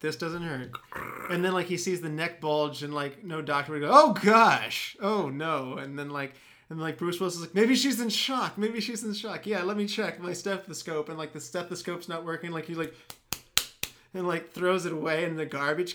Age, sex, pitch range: 30-49, male, 155-195 Hz